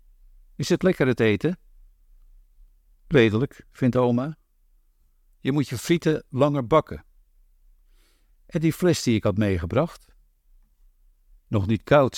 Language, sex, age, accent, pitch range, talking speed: English, male, 50-69, Dutch, 75-110 Hz, 120 wpm